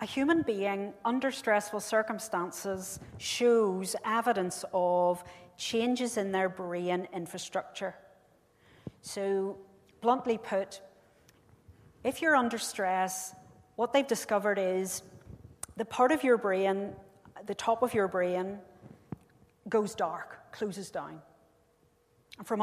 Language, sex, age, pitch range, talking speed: English, female, 40-59, 185-225 Hz, 105 wpm